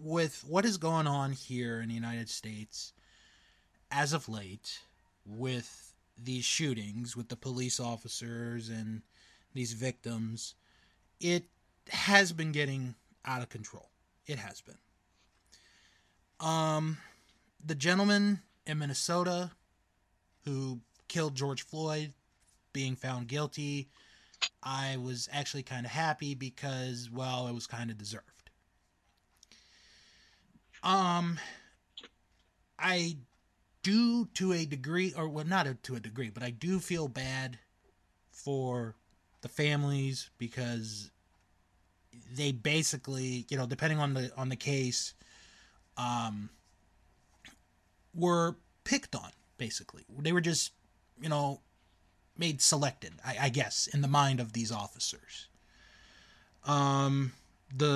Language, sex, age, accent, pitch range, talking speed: English, male, 20-39, American, 110-150 Hz, 115 wpm